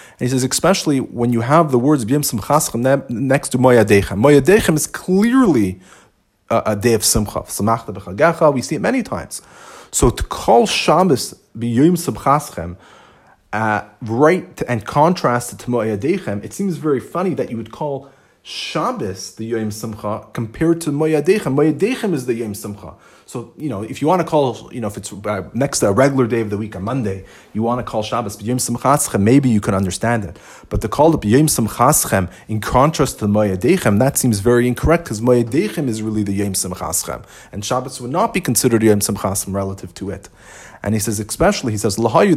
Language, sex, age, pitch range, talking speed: English, male, 30-49, 105-145 Hz, 180 wpm